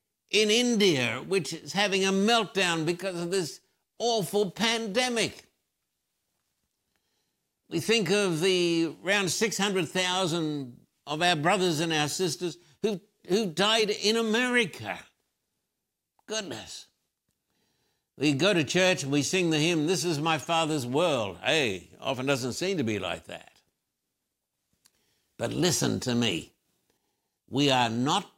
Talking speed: 125 wpm